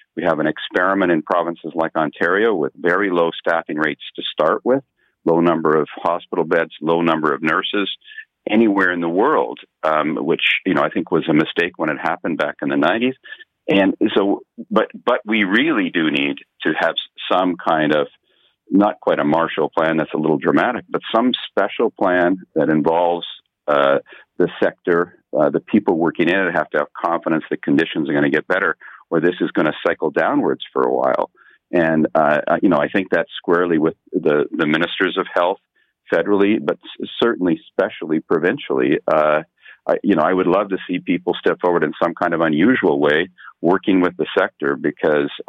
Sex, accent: male, American